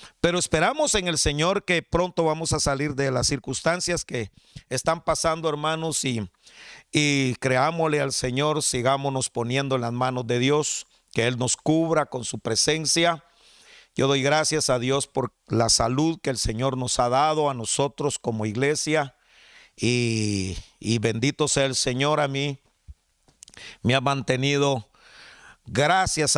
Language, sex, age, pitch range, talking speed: Spanish, male, 50-69, 125-155 Hz, 150 wpm